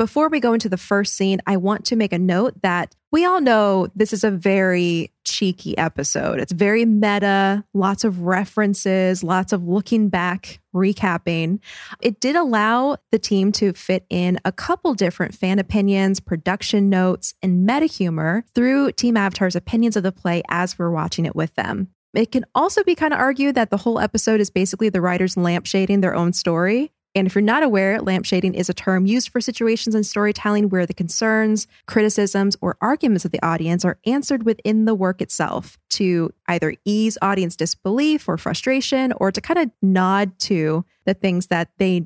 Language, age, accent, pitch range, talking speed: English, 20-39, American, 185-225 Hz, 185 wpm